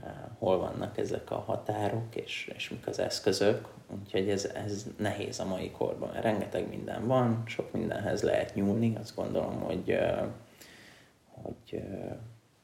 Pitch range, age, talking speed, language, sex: 100-120 Hz, 30-49, 135 wpm, Hungarian, male